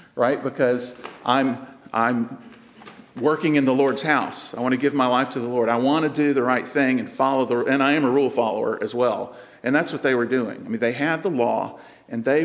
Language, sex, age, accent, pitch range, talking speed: English, male, 50-69, American, 120-155 Hz, 240 wpm